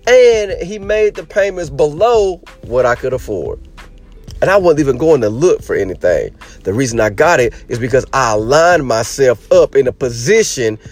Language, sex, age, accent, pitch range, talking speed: English, male, 40-59, American, 130-215 Hz, 180 wpm